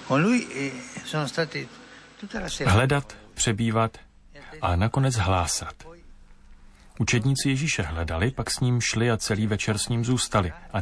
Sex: male